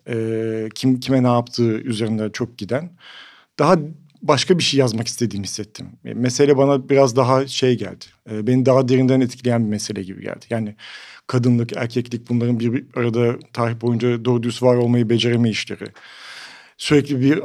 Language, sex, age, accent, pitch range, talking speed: Turkish, male, 50-69, native, 115-150 Hz, 150 wpm